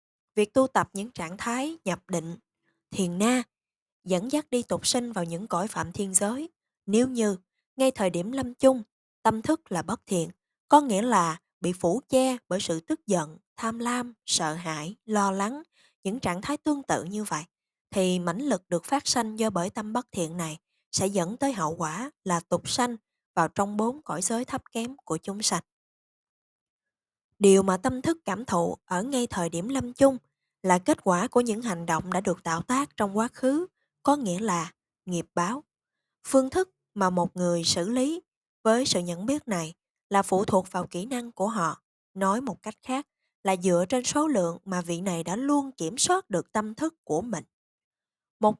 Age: 20-39